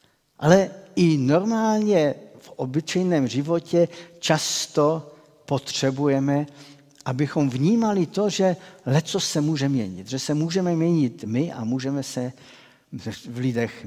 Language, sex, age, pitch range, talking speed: Czech, male, 60-79, 130-175 Hz, 115 wpm